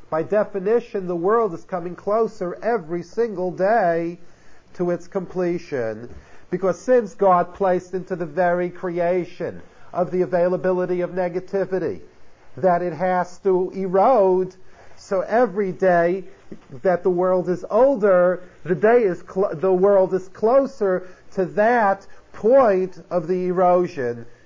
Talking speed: 130 wpm